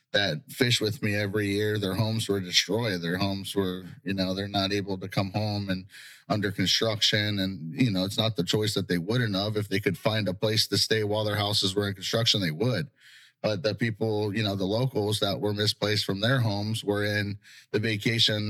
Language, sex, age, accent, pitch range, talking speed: English, male, 30-49, American, 95-110 Hz, 220 wpm